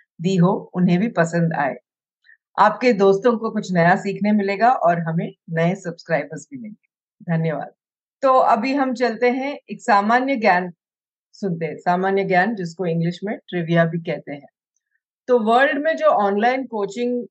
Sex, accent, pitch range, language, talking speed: female, native, 175-230 Hz, Hindi, 155 wpm